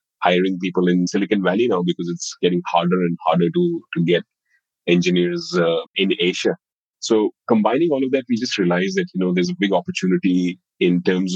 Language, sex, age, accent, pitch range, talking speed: English, male, 30-49, Indian, 90-100 Hz, 190 wpm